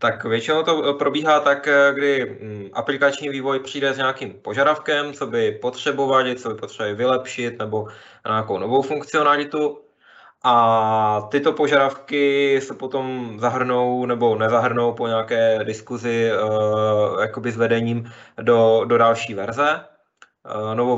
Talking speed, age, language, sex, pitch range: 120 wpm, 20-39, Czech, male, 115-135 Hz